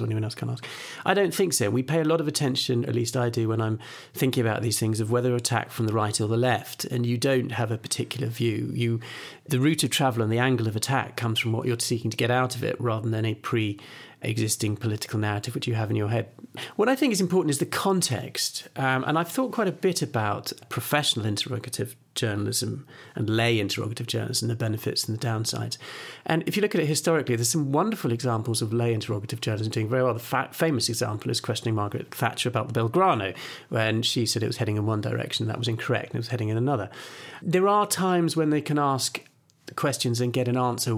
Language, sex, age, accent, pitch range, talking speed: English, male, 40-59, British, 115-135 Hz, 235 wpm